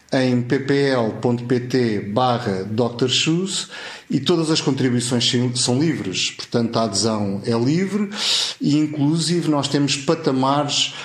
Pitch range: 120-145 Hz